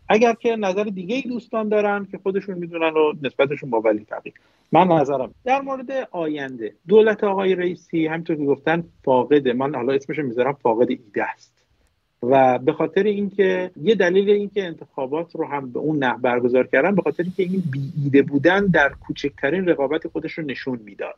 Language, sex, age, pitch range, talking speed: Persian, male, 50-69, 135-195 Hz, 180 wpm